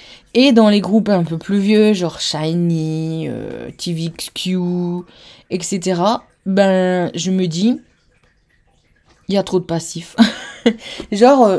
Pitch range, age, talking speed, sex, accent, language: 175-225 Hz, 20-39, 125 wpm, female, French, French